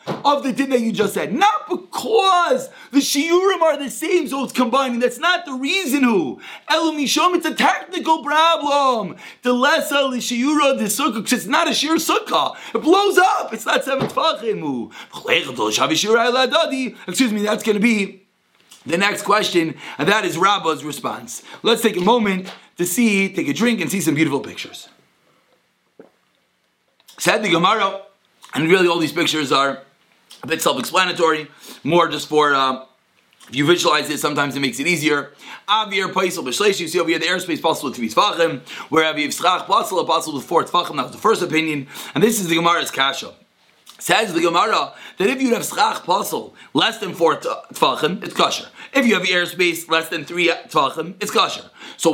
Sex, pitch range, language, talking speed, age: male, 170-280 Hz, English, 180 wpm, 30-49